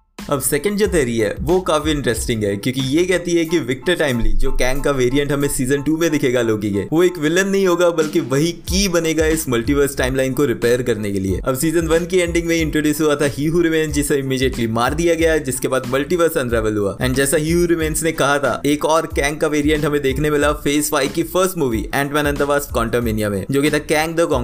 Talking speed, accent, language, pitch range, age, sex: 135 wpm, native, Hindi, 135-170 Hz, 20-39, male